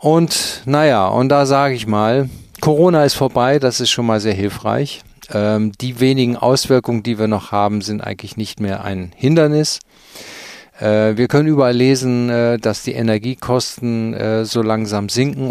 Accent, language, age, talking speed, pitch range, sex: German, German, 40-59, 165 wpm, 110-130 Hz, male